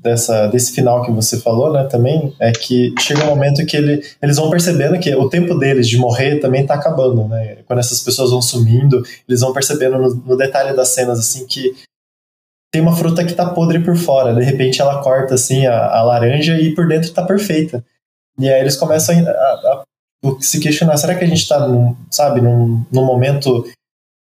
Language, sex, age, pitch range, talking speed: Portuguese, male, 20-39, 120-150 Hz, 200 wpm